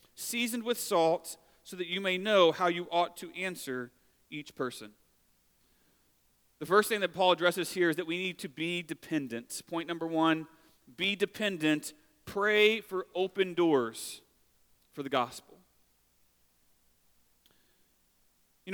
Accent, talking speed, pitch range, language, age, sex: American, 135 wpm, 155-200 Hz, English, 40-59, male